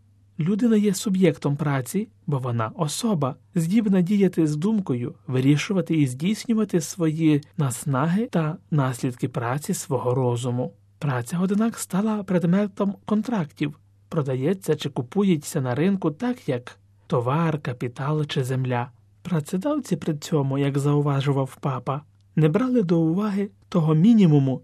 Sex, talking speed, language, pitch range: male, 120 wpm, Ukrainian, 135-190 Hz